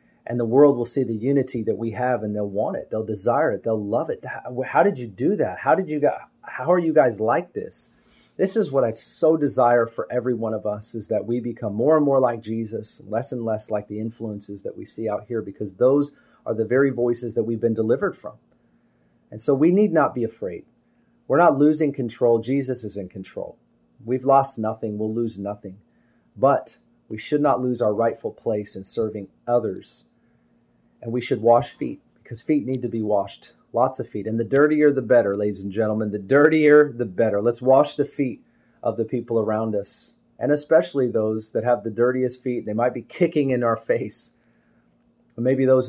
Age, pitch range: 30-49, 110-130 Hz